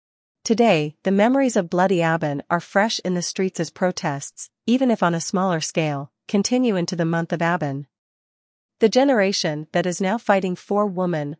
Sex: female